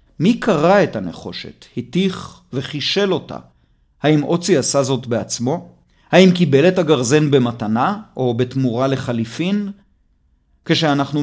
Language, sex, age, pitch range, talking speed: Hebrew, male, 40-59, 120-170 Hz, 110 wpm